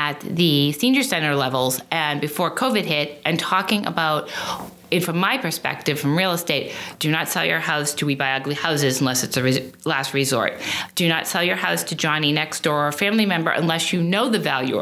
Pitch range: 145-180 Hz